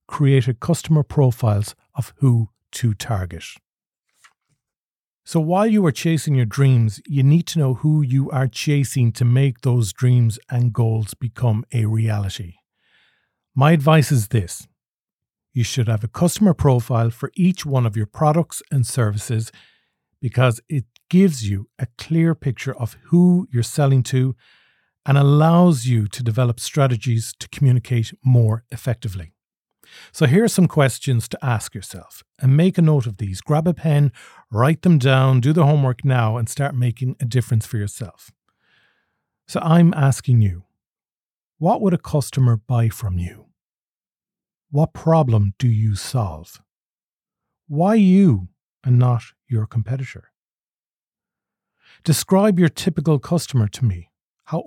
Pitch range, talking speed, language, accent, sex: 115-150 Hz, 145 wpm, English, Irish, male